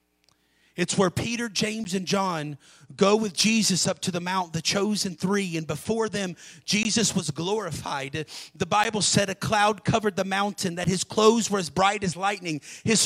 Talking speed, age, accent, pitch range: 180 wpm, 40-59, American, 160-235 Hz